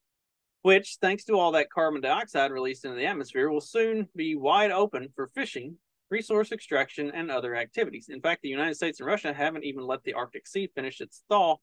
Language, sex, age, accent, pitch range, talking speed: English, male, 30-49, American, 135-190 Hz, 200 wpm